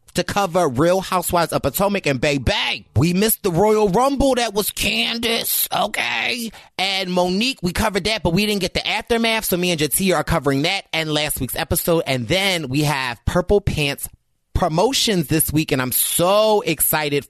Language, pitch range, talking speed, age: English, 135-190 Hz, 185 wpm, 30-49